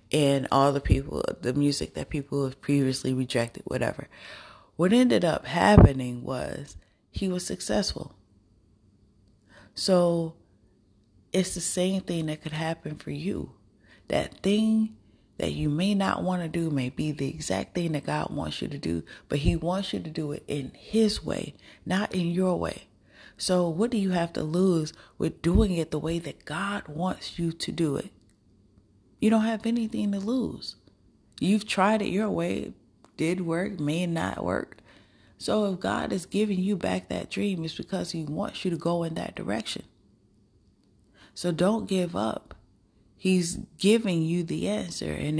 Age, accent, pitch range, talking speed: 30-49, American, 125-190 Hz, 170 wpm